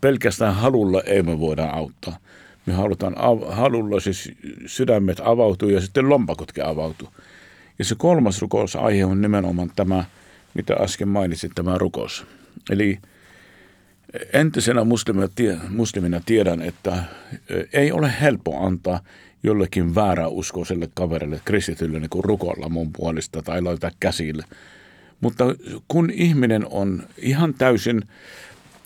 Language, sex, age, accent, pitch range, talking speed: Finnish, male, 50-69, native, 90-115 Hz, 115 wpm